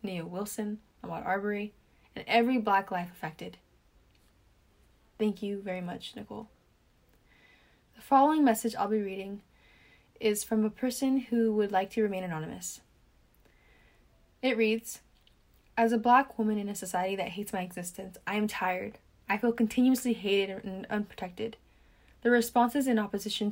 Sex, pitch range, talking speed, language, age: female, 190-230 Hz, 145 wpm, English, 10-29